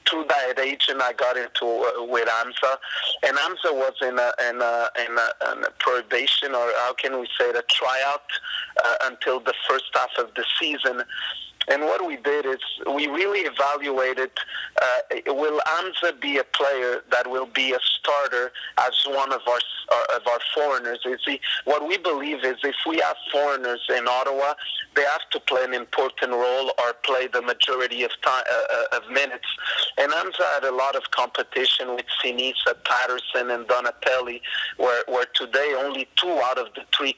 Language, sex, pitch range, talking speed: English, male, 125-150 Hz, 180 wpm